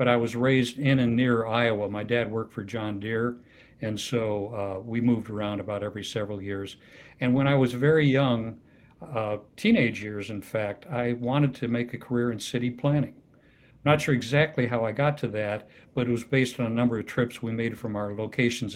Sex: male